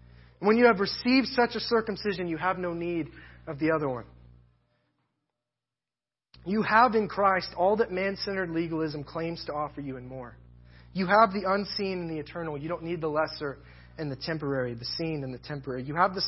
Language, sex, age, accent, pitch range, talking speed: English, male, 30-49, American, 135-210 Hz, 190 wpm